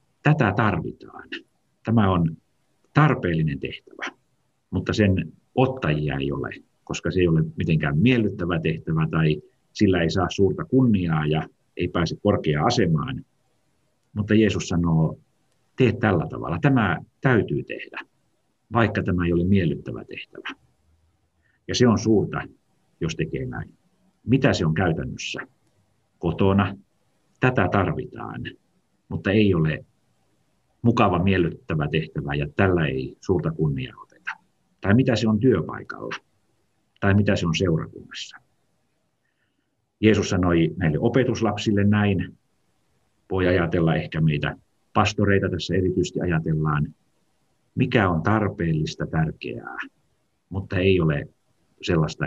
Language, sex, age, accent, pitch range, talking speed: Finnish, male, 50-69, native, 80-110 Hz, 115 wpm